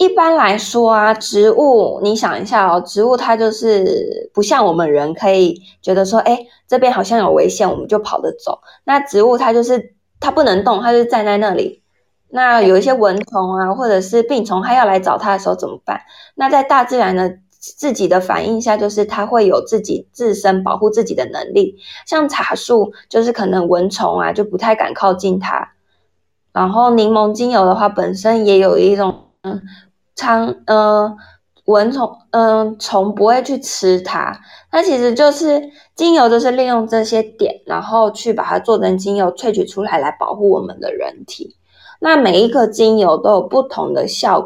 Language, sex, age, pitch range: Chinese, female, 20-39, 195-245 Hz